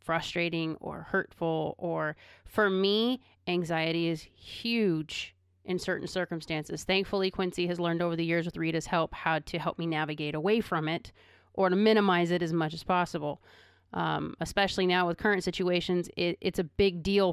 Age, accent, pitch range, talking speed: 30-49, American, 160-185 Hz, 165 wpm